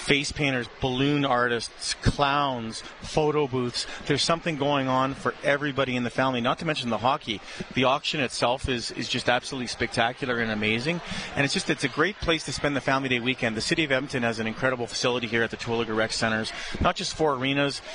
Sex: male